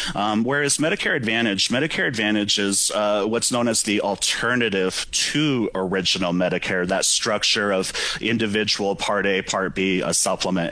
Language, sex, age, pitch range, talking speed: English, male, 30-49, 100-120 Hz, 145 wpm